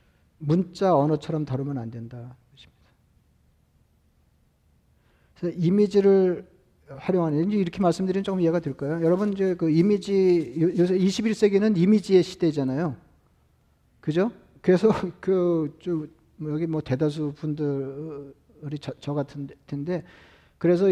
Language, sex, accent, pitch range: Korean, male, native, 145-180 Hz